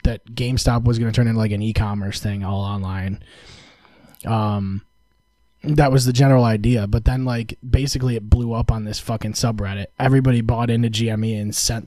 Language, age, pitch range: English, 20-39, 100-120 Hz